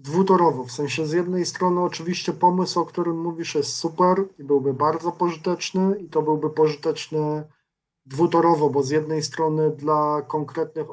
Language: Polish